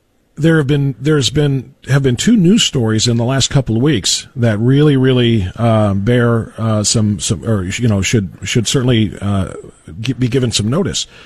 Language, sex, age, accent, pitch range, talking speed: English, male, 40-59, American, 120-165 Hz, 185 wpm